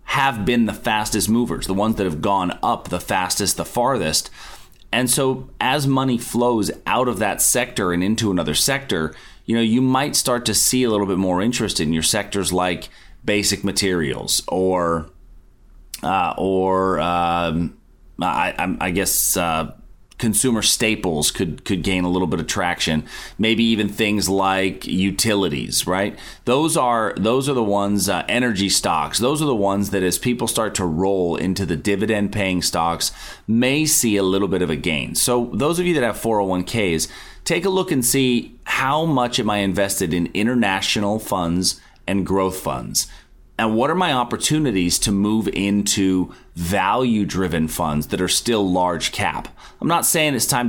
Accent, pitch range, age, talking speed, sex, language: American, 90-115 Hz, 30-49, 170 wpm, male, English